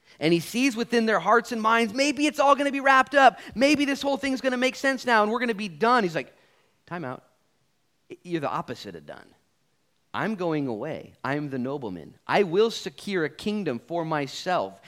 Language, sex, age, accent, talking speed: English, male, 30-49, American, 215 wpm